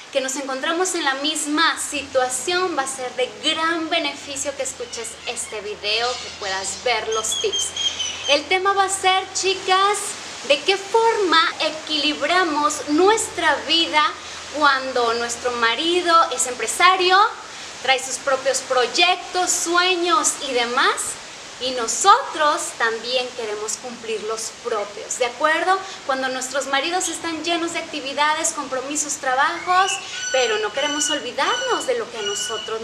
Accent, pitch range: Mexican, 250-345 Hz